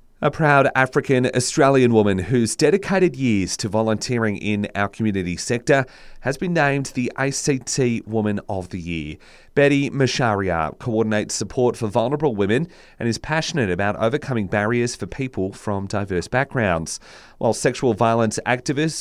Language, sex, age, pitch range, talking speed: English, male, 30-49, 105-140 Hz, 140 wpm